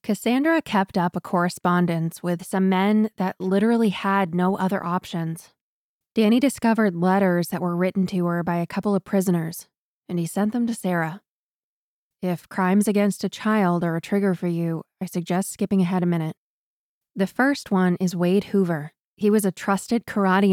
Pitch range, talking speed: 175-200 Hz, 175 wpm